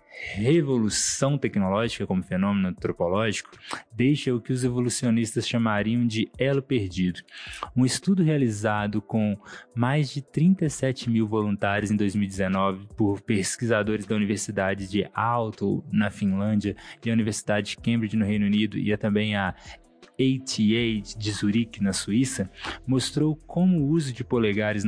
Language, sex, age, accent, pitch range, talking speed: English, male, 20-39, Brazilian, 105-130 Hz, 135 wpm